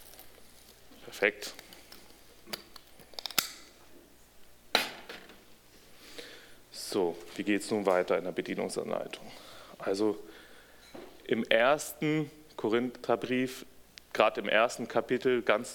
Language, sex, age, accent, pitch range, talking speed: German, male, 30-49, German, 105-130 Hz, 70 wpm